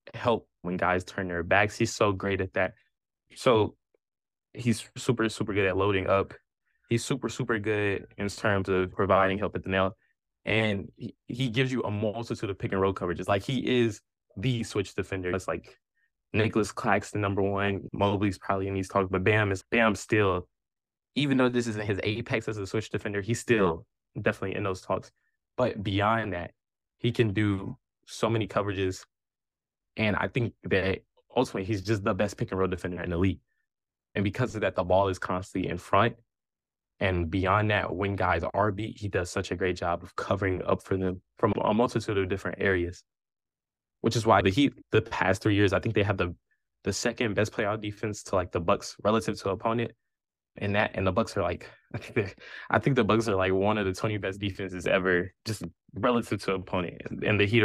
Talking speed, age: 205 wpm, 10-29